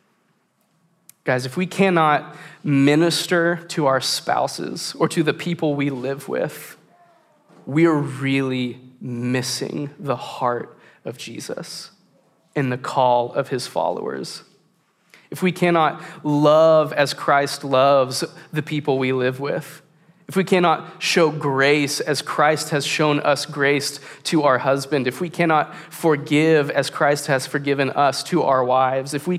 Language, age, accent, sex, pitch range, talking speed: English, 20-39, American, male, 140-165 Hz, 140 wpm